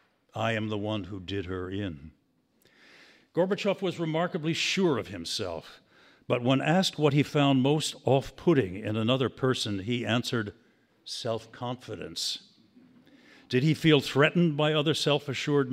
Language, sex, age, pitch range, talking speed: English, male, 60-79, 110-145 Hz, 135 wpm